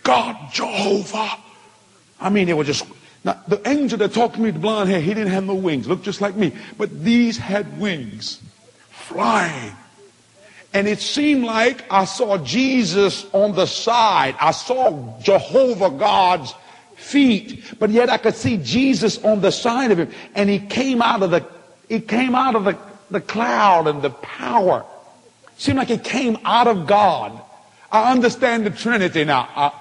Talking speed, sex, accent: 175 wpm, male, American